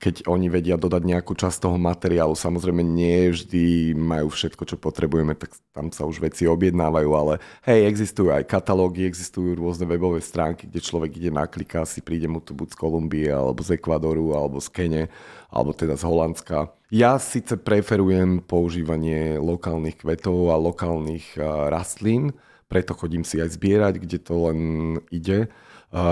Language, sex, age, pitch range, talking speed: Slovak, male, 30-49, 80-90 Hz, 160 wpm